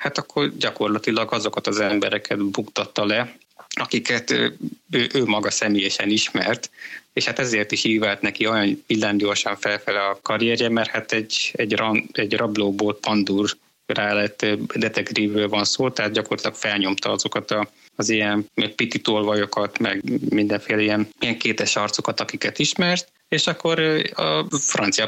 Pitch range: 105-115 Hz